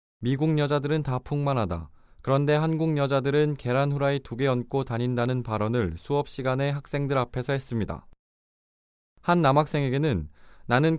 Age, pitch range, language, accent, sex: 20-39, 115-150 Hz, Korean, native, male